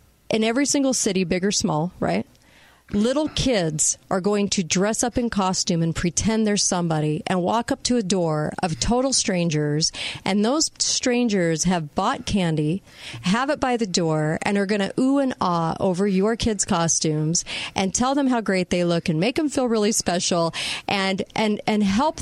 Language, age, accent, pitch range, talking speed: English, 40-59, American, 180-240 Hz, 185 wpm